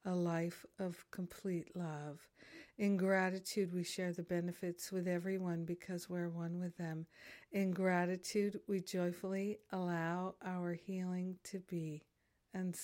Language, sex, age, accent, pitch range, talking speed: English, female, 50-69, American, 175-205 Hz, 130 wpm